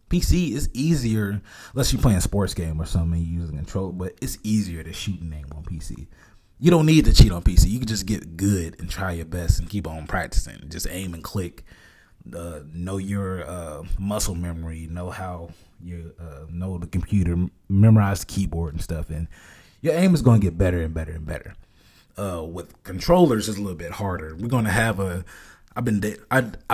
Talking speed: 215 wpm